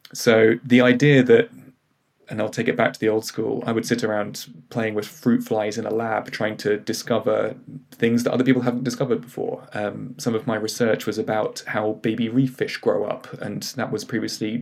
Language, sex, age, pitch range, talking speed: English, male, 20-39, 110-125 Hz, 210 wpm